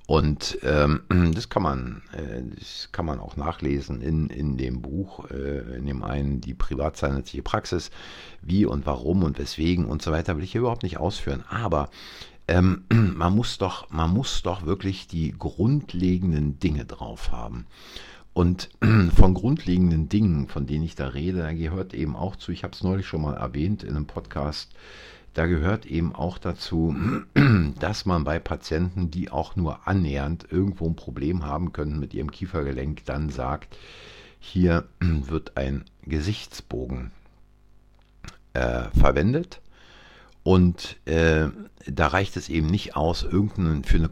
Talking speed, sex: 155 wpm, male